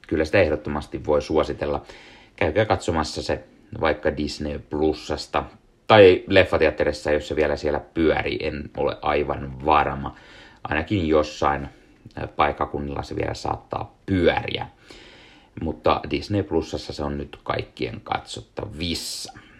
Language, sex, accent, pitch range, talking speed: Finnish, male, native, 75-110 Hz, 115 wpm